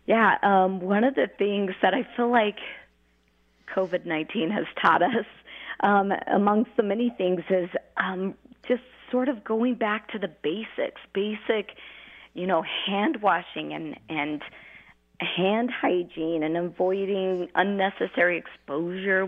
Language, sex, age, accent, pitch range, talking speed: English, female, 30-49, American, 175-215 Hz, 130 wpm